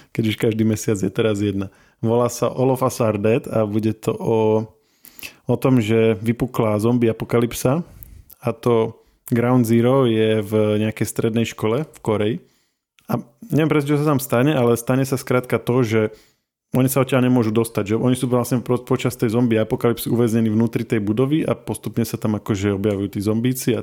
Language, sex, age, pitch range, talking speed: Slovak, male, 20-39, 110-125 Hz, 180 wpm